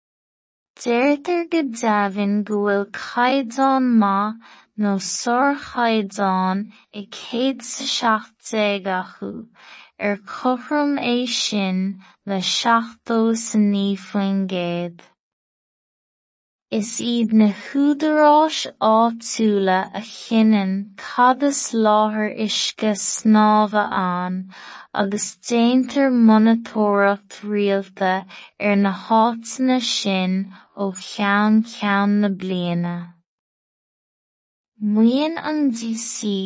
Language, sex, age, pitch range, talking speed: English, female, 20-39, 200-230 Hz, 75 wpm